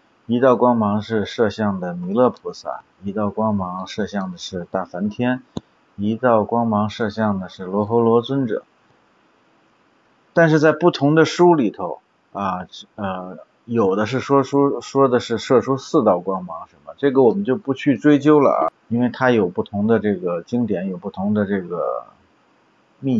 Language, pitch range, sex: Chinese, 100-125 Hz, male